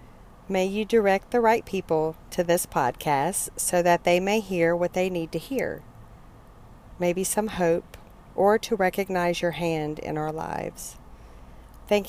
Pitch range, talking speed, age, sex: 155-185 Hz, 155 wpm, 50-69, female